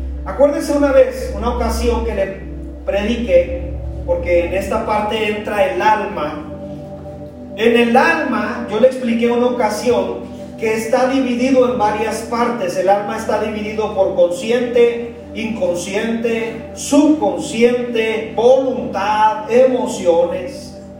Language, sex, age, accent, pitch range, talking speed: Spanish, male, 40-59, Mexican, 220-265 Hz, 110 wpm